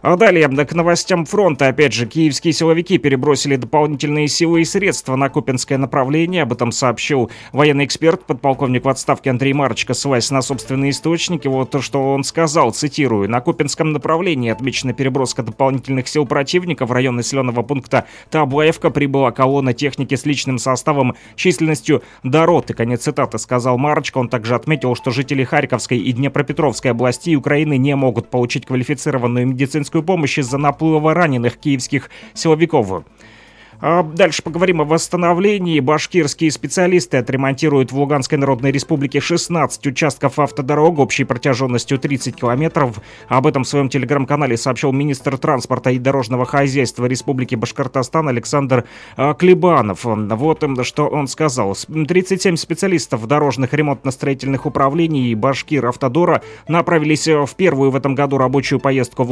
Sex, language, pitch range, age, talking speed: male, Russian, 130-155 Hz, 30-49, 140 wpm